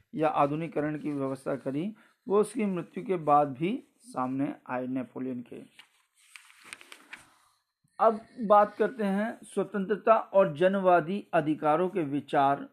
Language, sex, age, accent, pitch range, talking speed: Hindi, male, 50-69, native, 145-185 Hz, 120 wpm